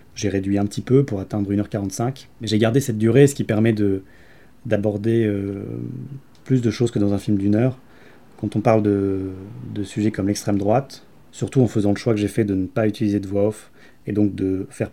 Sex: male